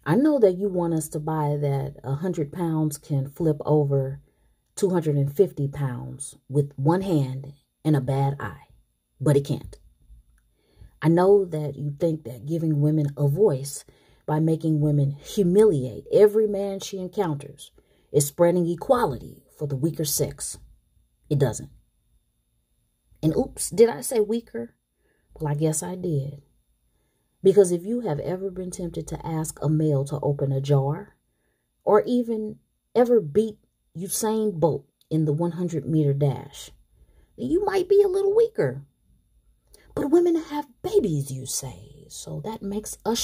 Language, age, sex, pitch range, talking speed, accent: English, 30-49, female, 140-200 Hz, 145 wpm, American